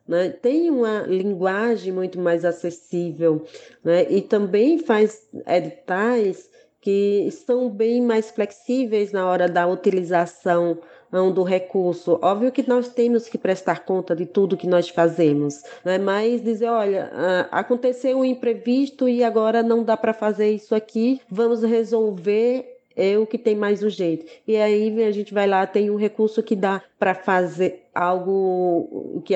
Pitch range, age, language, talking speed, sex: 180-225 Hz, 20-39, Portuguese, 145 wpm, female